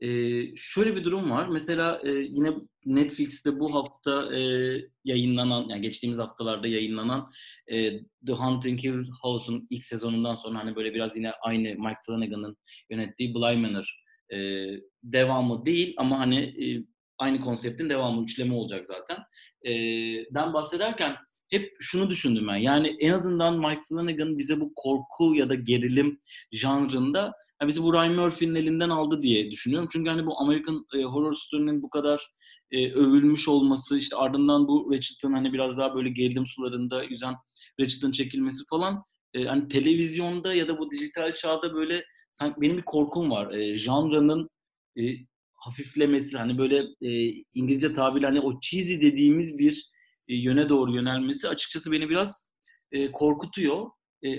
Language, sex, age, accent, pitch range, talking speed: Turkish, male, 30-49, native, 125-155 Hz, 135 wpm